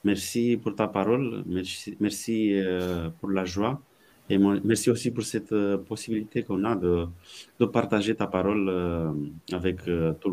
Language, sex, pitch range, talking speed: French, male, 85-105 Hz, 140 wpm